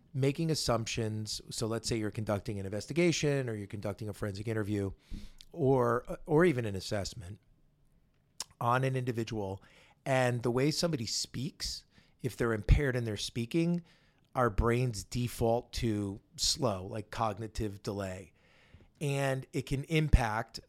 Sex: male